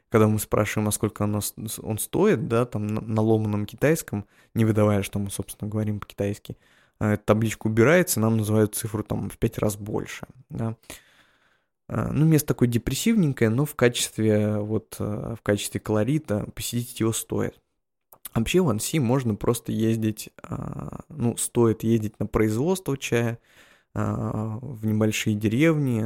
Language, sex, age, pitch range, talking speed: Russian, male, 20-39, 105-125 Hz, 155 wpm